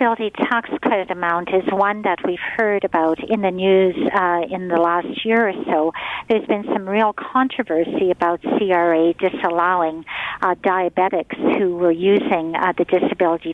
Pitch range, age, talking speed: 175-235 Hz, 50-69, 165 wpm